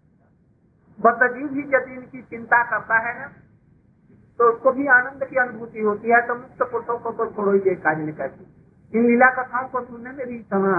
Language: Hindi